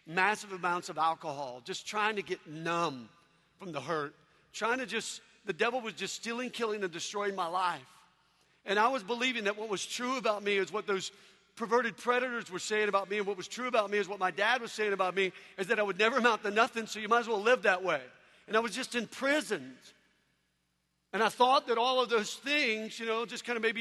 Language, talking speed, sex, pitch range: English, 235 wpm, male, 185-230 Hz